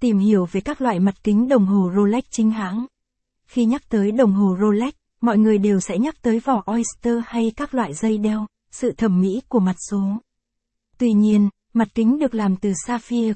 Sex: female